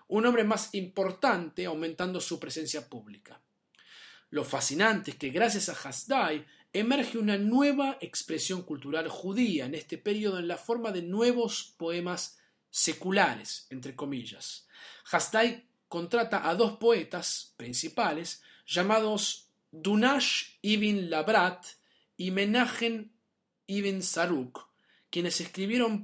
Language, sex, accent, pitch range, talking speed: Spanish, male, Argentinian, 170-225 Hz, 115 wpm